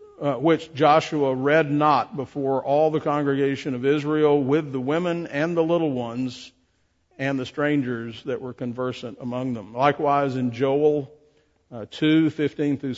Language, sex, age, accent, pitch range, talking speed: English, male, 50-69, American, 125-150 Hz, 150 wpm